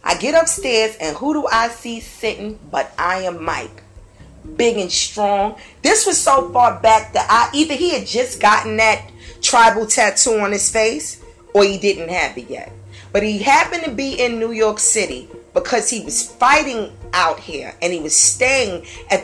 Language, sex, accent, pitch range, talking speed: English, female, American, 180-245 Hz, 185 wpm